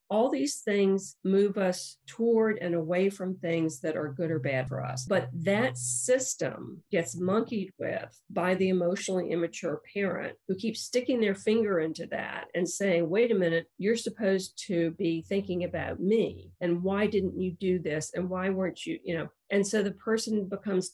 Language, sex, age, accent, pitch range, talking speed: English, female, 50-69, American, 175-215 Hz, 185 wpm